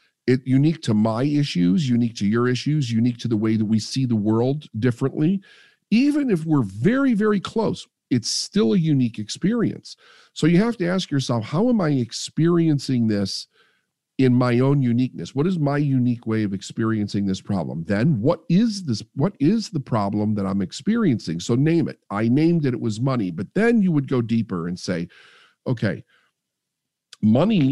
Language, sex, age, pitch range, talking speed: English, male, 50-69, 115-170 Hz, 180 wpm